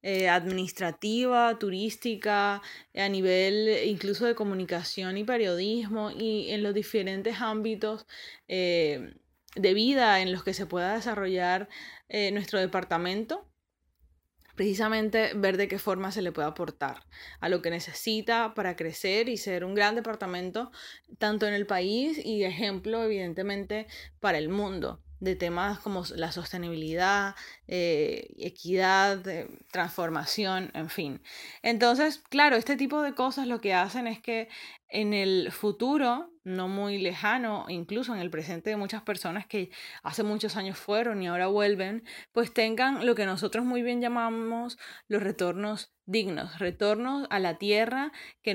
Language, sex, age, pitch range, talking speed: Spanish, female, 10-29, 185-225 Hz, 145 wpm